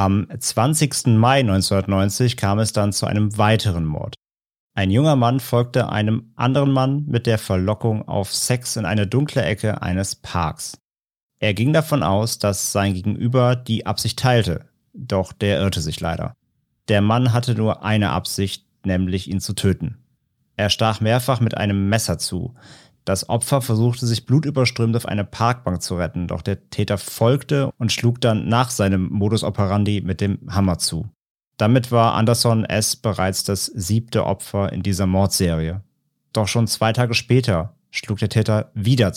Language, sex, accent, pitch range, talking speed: German, male, German, 100-120 Hz, 160 wpm